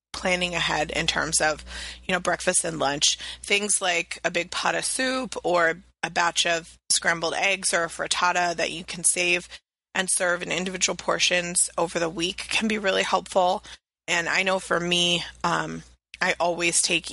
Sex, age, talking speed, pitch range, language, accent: female, 20-39, 180 wpm, 170-195 Hz, English, American